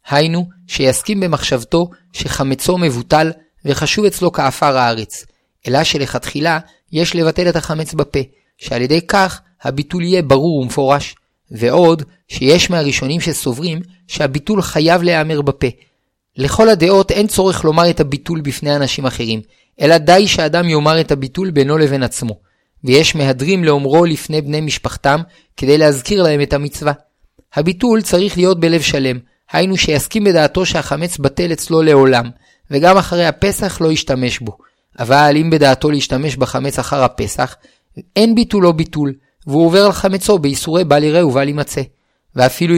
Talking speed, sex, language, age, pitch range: 140 wpm, male, Hebrew, 30-49, 140-175 Hz